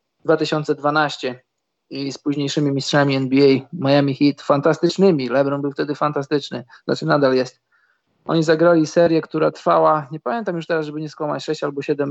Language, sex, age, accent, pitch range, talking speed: Polish, male, 20-39, native, 135-170 Hz, 155 wpm